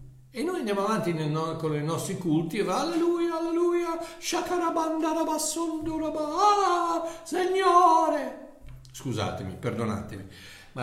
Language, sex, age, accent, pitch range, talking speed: Italian, male, 60-79, native, 115-180 Hz, 105 wpm